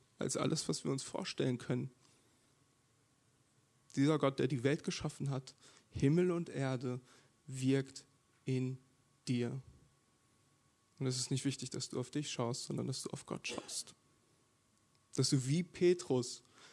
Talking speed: 145 wpm